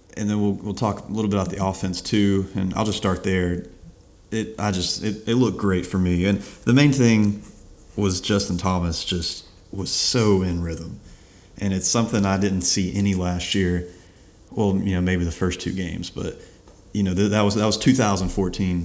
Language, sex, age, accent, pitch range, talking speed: English, male, 30-49, American, 90-100 Hz, 205 wpm